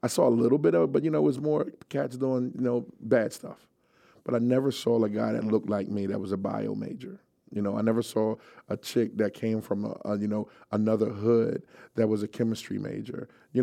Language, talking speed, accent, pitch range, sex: English, 245 wpm, American, 105-115 Hz, male